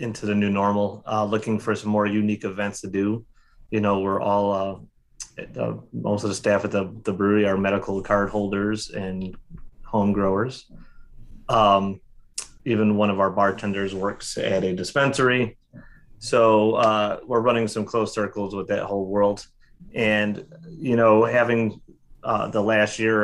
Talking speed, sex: 160 wpm, male